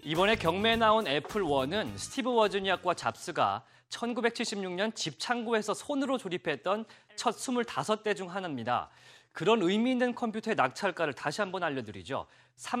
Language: Korean